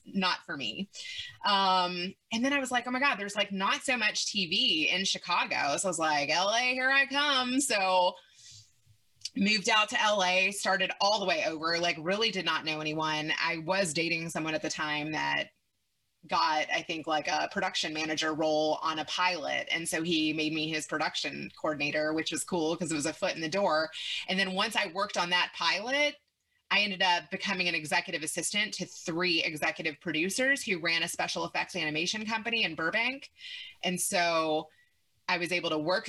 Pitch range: 160-215 Hz